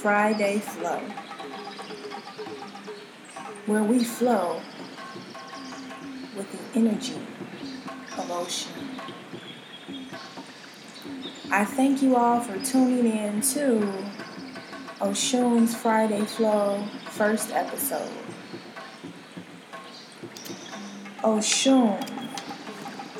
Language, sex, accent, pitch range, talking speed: English, female, American, 210-260 Hz, 60 wpm